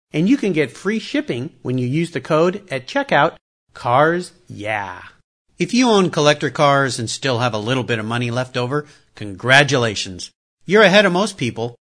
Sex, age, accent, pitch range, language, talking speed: male, 50-69, American, 125-190 Hz, English, 180 wpm